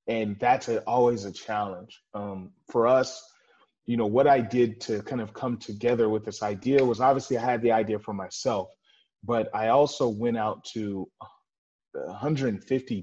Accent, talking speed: American, 165 wpm